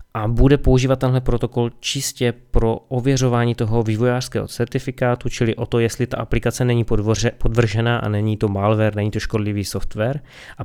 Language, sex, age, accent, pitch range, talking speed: Czech, male, 20-39, native, 110-125 Hz, 160 wpm